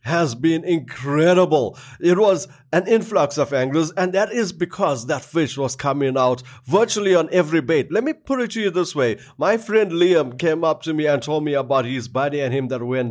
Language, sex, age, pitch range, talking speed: English, male, 30-49, 140-185 Hz, 215 wpm